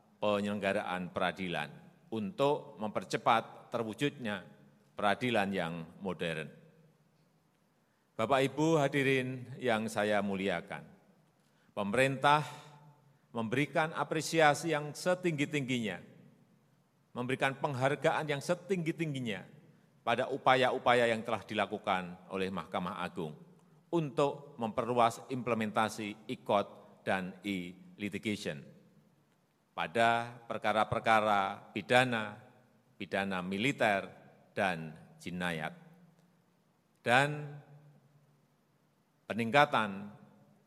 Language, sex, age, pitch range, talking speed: Indonesian, male, 40-59, 105-145 Hz, 70 wpm